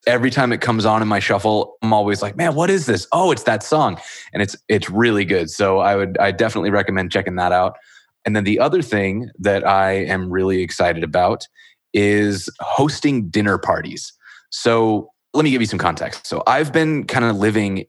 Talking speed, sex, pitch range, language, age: 205 wpm, male, 90-110 Hz, English, 20-39